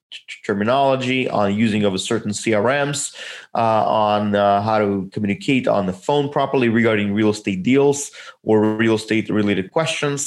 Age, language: 30-49, English